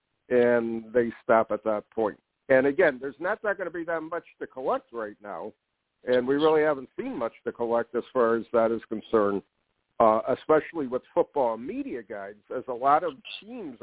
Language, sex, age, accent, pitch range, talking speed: English, male, 50-69, American, 120-160 Hz, 195 wpm